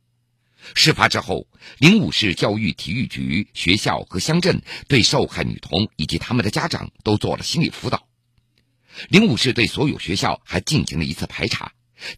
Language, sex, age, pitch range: Chinese, male, 50-69, 110-140 Hz